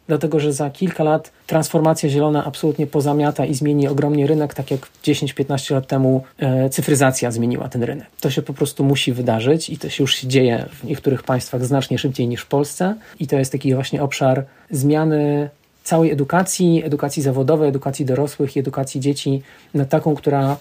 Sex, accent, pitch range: male, native, 130-150 Hz